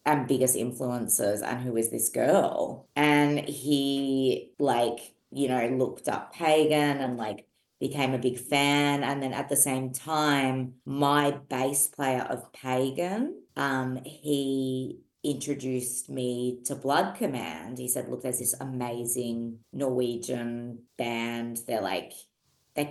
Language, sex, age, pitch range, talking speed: English, female, 30-49, 125-145 Hz, 135 wpm